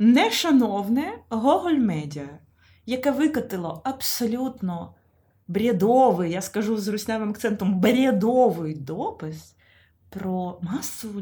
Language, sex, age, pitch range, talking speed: Ukrainian, female, 20-39, 180-255 Hz, 85 wpm